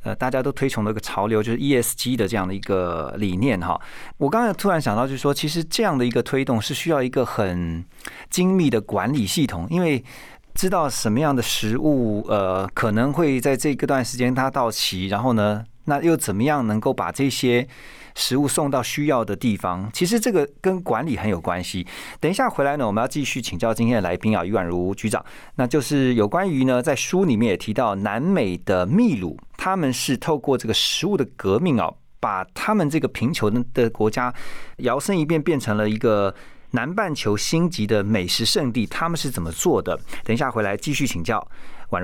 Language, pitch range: Chinese, 105-145 Hz